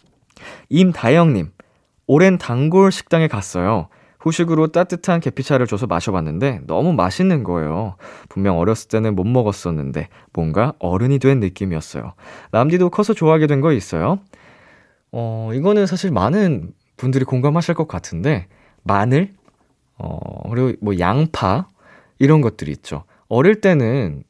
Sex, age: male, 20-39